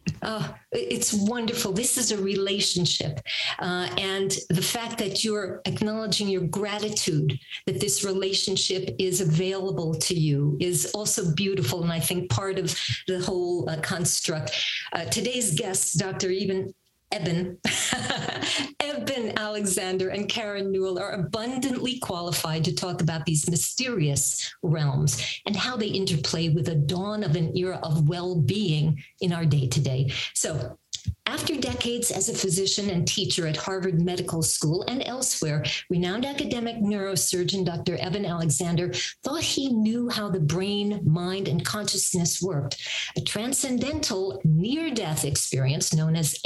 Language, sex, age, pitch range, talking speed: English, female, 50-69, 160-205 Hz, 140 wpm